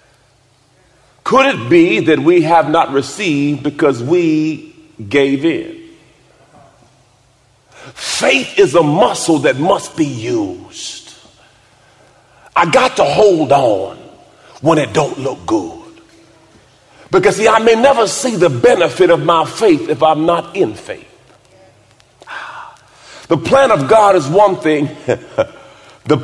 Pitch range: 140-220 Hz